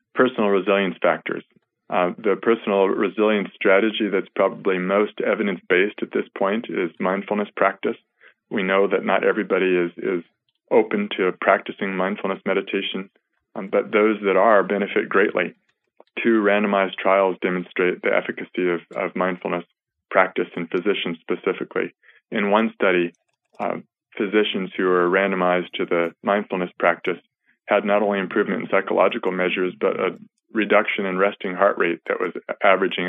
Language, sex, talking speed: English, male, 145 wpm